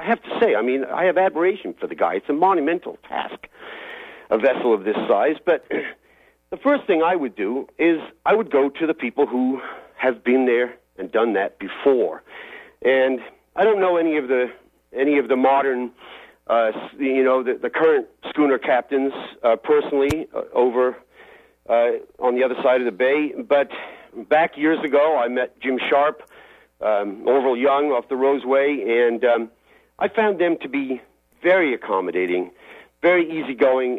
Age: 50-69